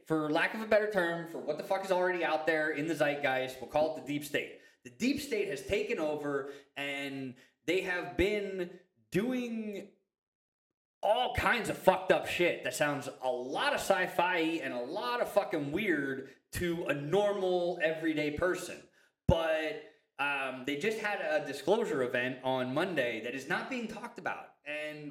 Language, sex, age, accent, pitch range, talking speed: English, male, 20-39, American, 145-195 Hz, 175 wpm